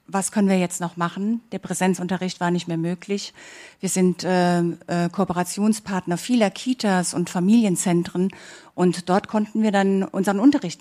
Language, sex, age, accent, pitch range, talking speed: German, female, 50-69, German, 180-220 Hz, 155 wpm